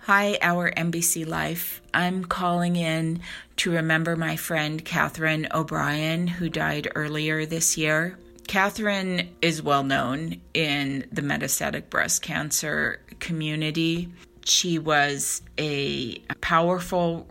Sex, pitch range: female, 145-170 Hz